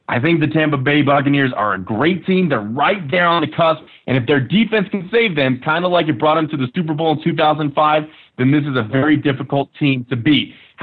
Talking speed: 245 wpm